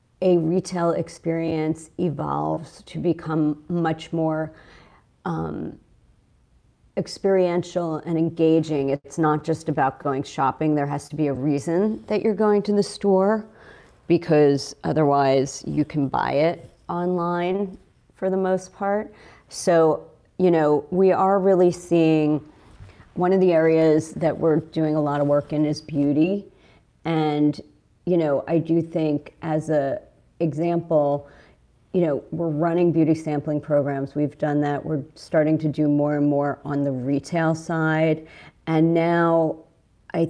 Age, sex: 40-59, female